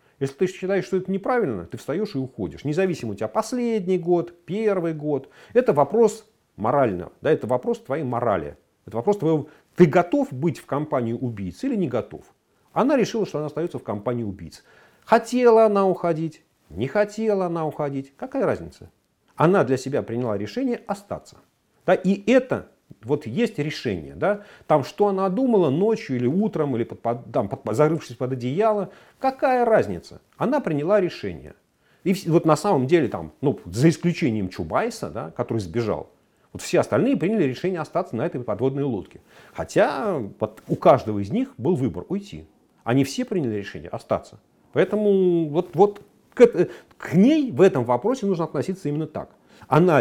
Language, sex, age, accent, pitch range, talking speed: Russian, male, 40-59, native, 130-205 Hz, 160 wpm